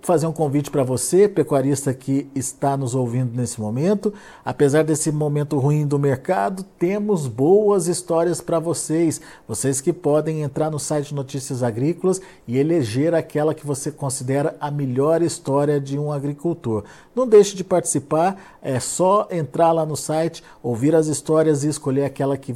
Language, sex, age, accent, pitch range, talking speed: Portuguese, male, 50-69, Brazilian, 135-175 Hz, 160 wpm